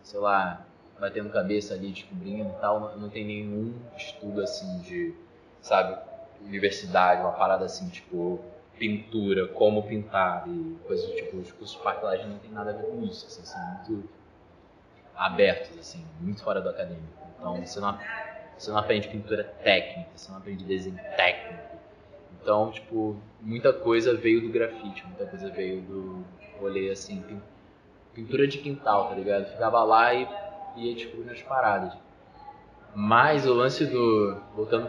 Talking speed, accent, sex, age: 155 wpm, Brazilian, male, 20-39